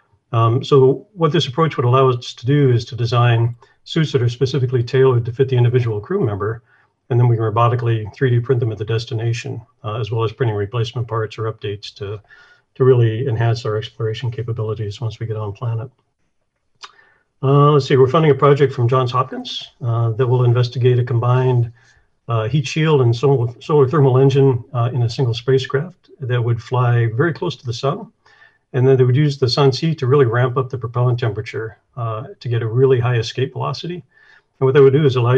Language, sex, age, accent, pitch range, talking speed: English, male, 50-69, American, 115-135 Hz, 205 wpm